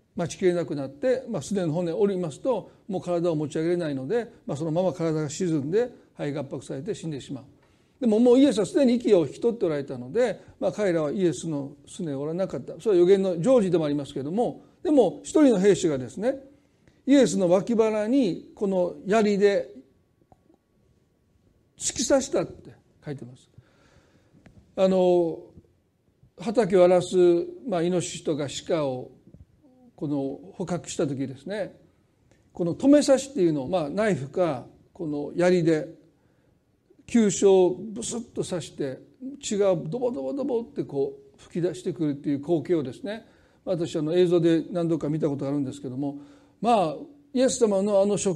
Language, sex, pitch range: Japanese, male, 155-225 Hz